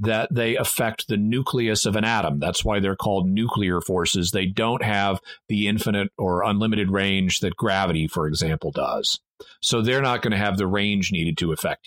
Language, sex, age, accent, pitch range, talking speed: English, male, 40-59, American, 100-130 Hz, 190 wpm